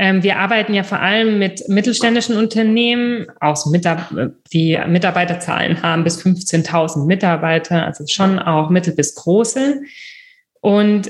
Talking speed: 115 wpm